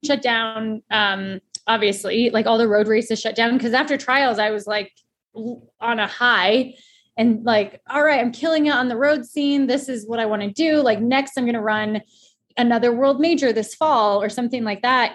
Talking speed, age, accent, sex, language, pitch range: 210 wpm, 20-39, American, female, English, 215-255 Hz